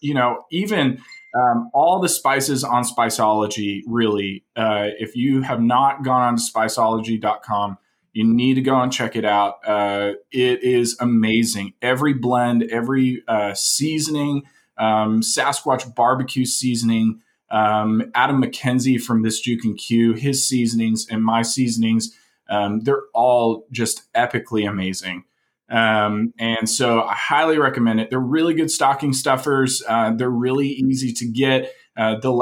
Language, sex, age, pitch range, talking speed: English, male, 20-39, 110-130 Hz, 145 wpm